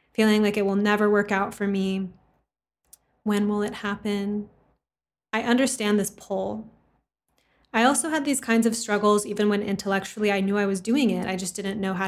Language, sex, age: English, female, 20-39